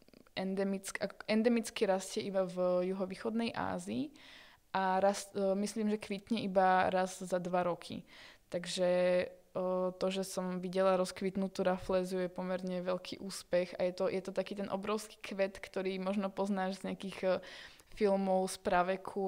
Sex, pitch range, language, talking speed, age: female, 185-195 Hz, Czech, 140 wpm, 20-39